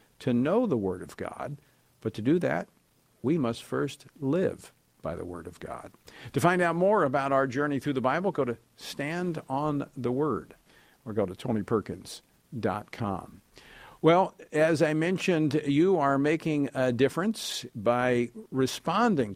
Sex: male